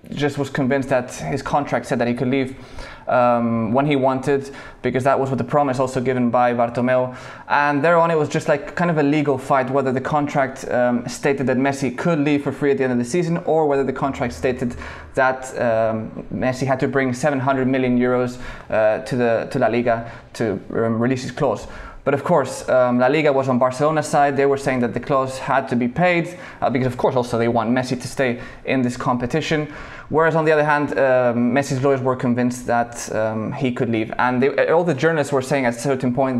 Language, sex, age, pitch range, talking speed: English, male, 20-39, 125-145 Hz, 230 wpm